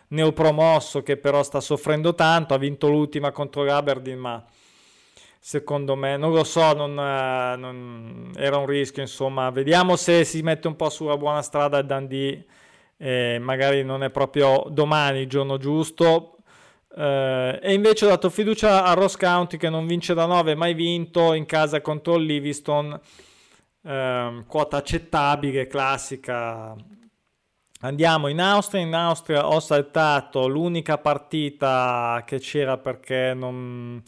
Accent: native